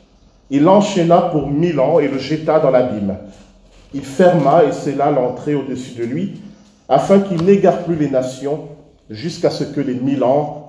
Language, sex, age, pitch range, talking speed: French, male, 40-59, 125-170 Hz, 170 wpm